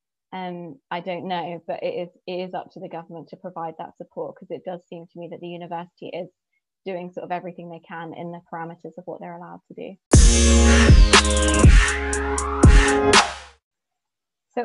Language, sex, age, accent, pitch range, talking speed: English, female, 20-39, British, 175-195 Hz, 170 wpm